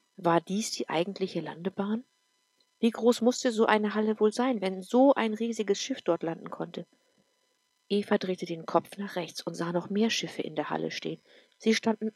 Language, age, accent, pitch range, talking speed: English, 50-69, German, 180-230 Hz, 190 wpm